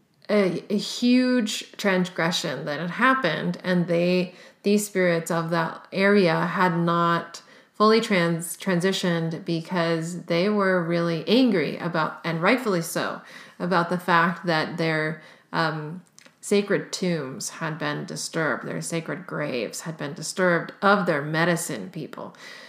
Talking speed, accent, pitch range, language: 130 wpm, American, 165-195 Hz, English